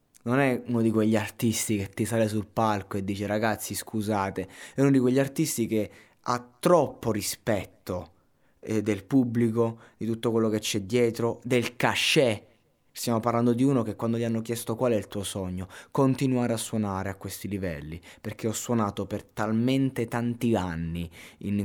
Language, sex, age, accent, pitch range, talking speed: Italian, male, 20-39, native, 95-115 Hz, 175 wpm